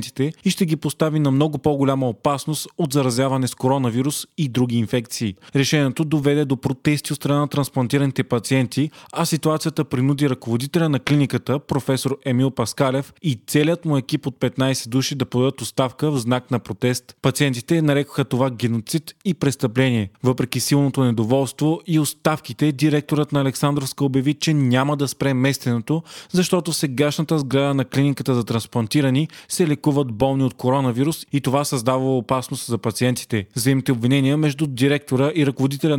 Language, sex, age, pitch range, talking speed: Bulgarian, male, 20-39, 130-150 Hz, 150 wpm